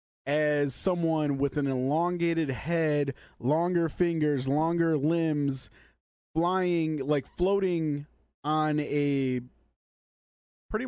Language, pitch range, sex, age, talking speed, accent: English, 125-175 Hz, male, 20-39, 90 wpm, American